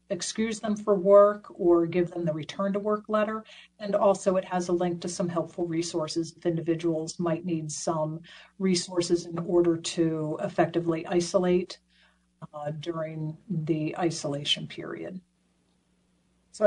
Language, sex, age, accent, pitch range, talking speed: English, female, 50-69, American, 165-200 Hz, 140 wpm